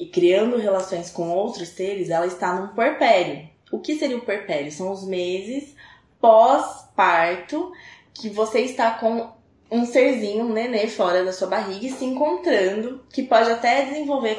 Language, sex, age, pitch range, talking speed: Portuguese, female, 20-39, 180-255 Hz, 160 wpm